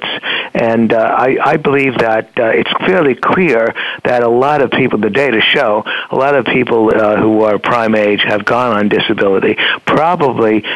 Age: 60-79